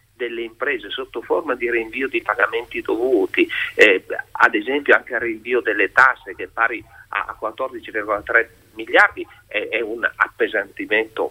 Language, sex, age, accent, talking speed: Italian, male, 40-59, native, 145 wpm